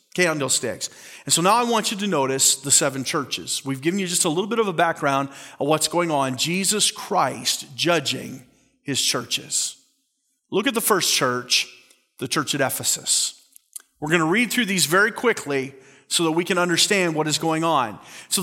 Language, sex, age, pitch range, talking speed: English, male, 40-59, 170-235 Hz, 190 wpm